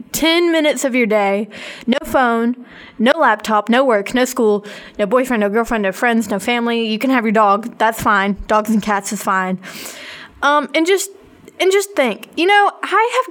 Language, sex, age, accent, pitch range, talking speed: English, female, 20-39, American, 215-285 Hz, 190 wpm